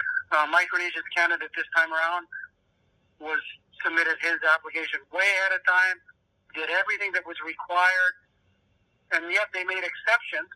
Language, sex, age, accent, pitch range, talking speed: English, male, 60-79, American, 155-205 Hz, 135 wpm